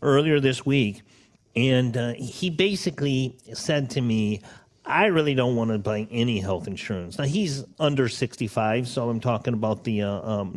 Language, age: English, 40-59